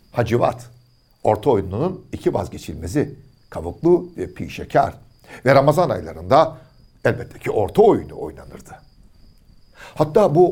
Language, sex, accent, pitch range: Turkish, male, native, 110-180 Hz